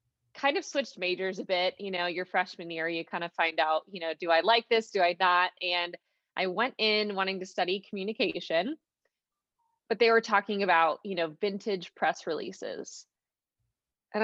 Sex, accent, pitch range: female, American, 175-220 Hz